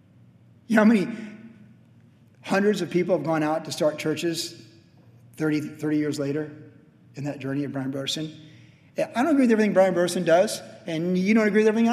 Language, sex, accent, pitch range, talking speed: English, male, American, 130-185 Hz, 185 wpm